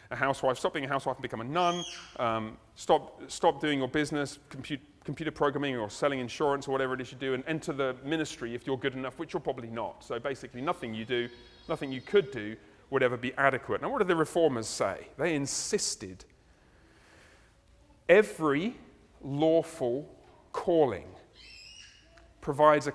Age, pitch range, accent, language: 40-59, 120-150 Hz, British, English